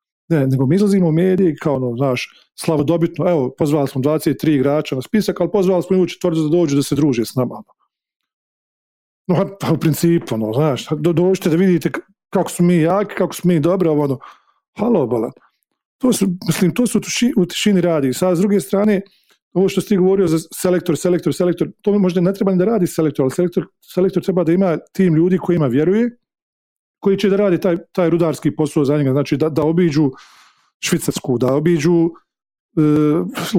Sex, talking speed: male, 195 wpm